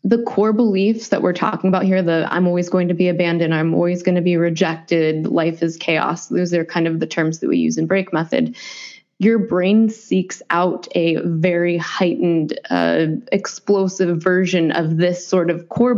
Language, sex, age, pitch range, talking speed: English, female, 20-39, 175-210 Hz, 190 wpm